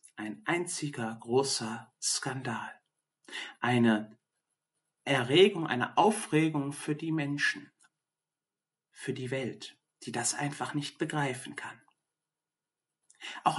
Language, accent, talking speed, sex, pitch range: German, German, 95 wpm, male, 140-180 Hz